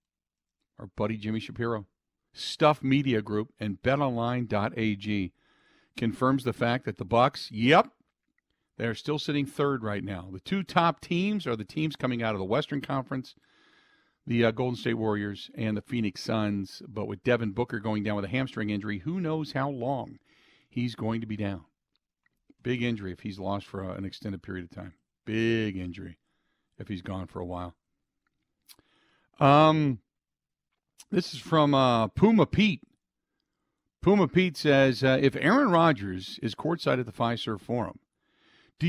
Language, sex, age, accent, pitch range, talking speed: English, male, 50-69, American, 105-155 Hz, 160 wpm